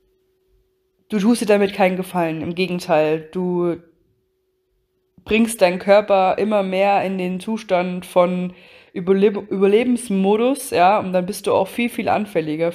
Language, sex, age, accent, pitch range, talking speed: German, female, 20-39, German, 170-195 Hz, 135 wpm